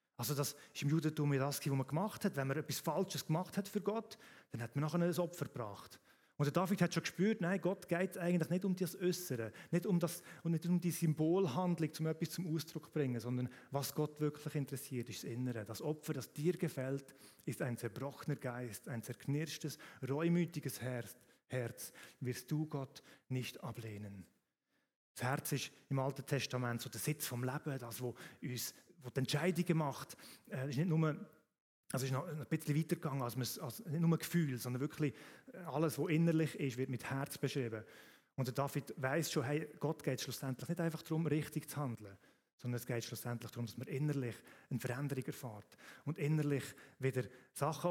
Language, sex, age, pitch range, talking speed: German, male, 30-49, 125-165 Hz, 185 wpm